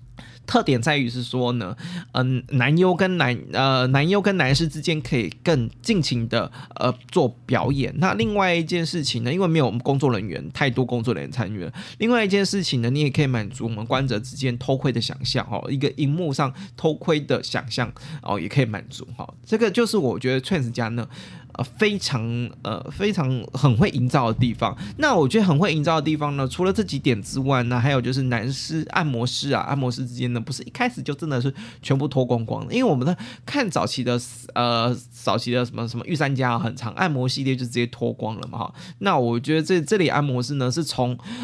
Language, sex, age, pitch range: Chinese, male, 20-39, 120-155 Hz